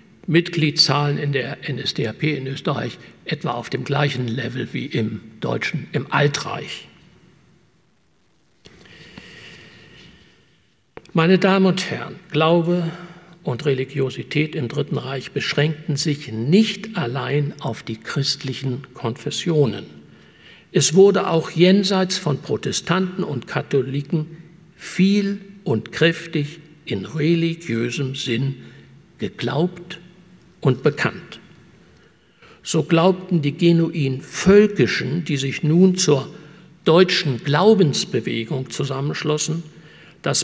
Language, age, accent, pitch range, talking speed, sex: German, 60-79, German, 140-175 Hz, 95 wpm, male